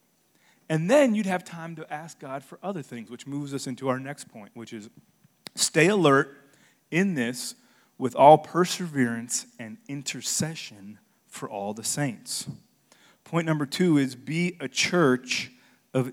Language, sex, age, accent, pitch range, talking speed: English, male, 30-49, American, 125-165 Hz, 155 wpm